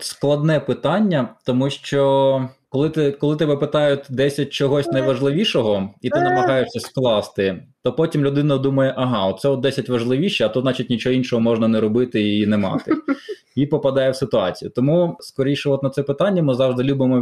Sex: male